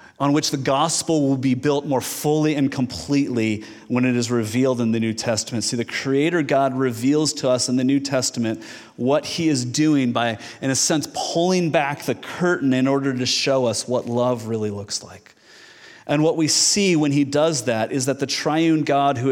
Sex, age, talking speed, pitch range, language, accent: male, 30-49, 205 wpm, 120-150 Hz, English, American